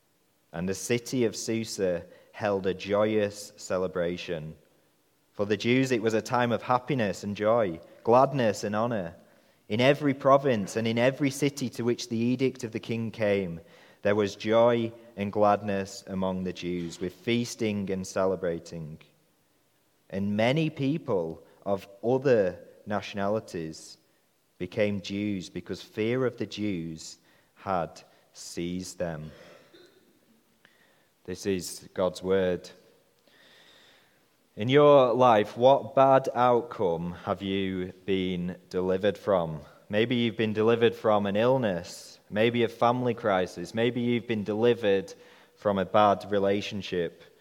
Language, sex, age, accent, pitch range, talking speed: English, male, 30-49, British, 95-120 Hz, 125 wpm